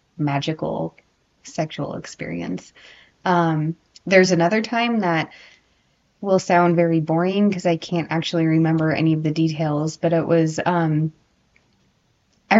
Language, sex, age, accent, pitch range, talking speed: English, female, 20-39, American, 155-175 Hz, 125 wpm